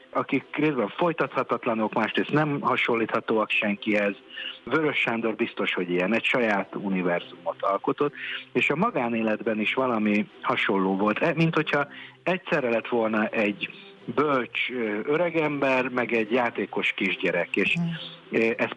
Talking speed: 120 wpm